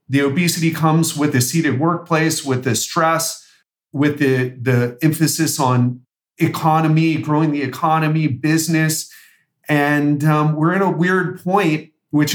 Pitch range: 135-165 Hz